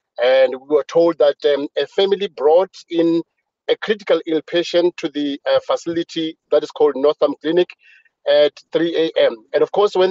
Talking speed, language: 180 wpm, English